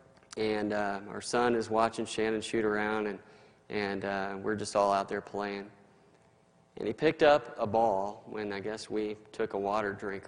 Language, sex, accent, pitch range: English, male, American, 100-135 Hz